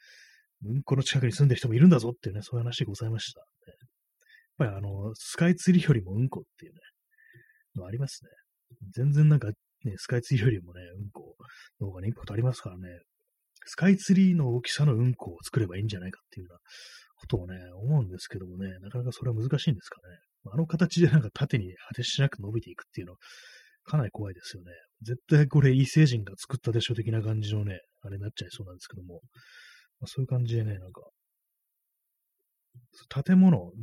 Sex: male